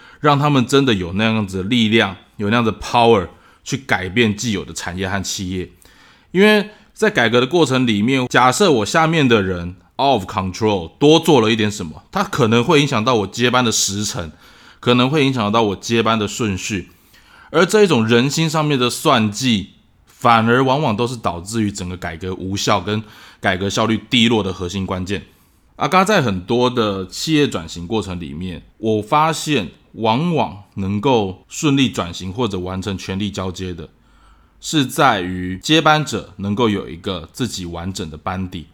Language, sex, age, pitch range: Chinese, male, 20-39, 95-125 Hz